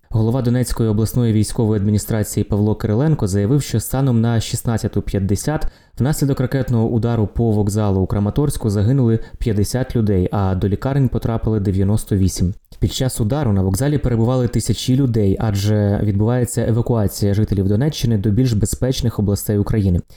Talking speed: 135 wpm